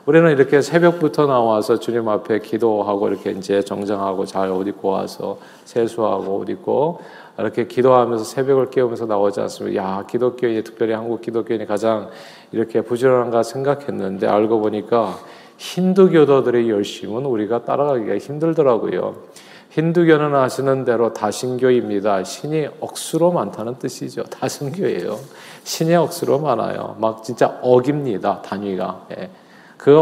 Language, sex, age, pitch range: Korean, male, 40-59, 110-150 Hz